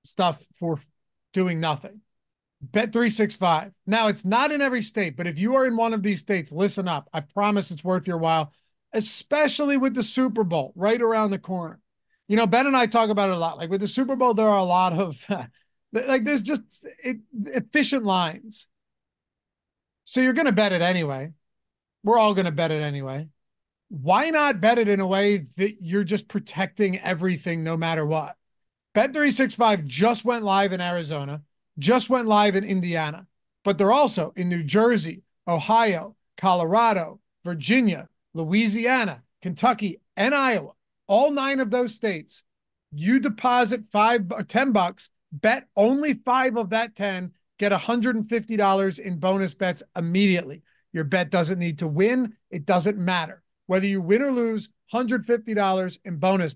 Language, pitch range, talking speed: English, 175-230 Hz, 165 wpm